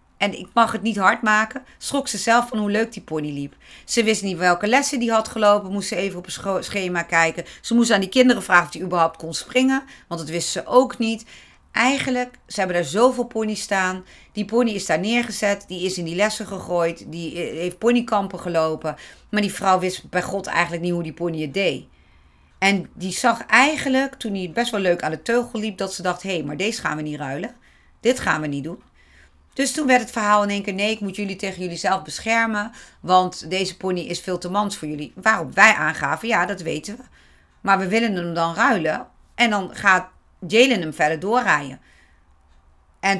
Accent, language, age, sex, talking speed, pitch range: Dutch, Dutch, 40-59, female, 220 wpm, 165-215 Hz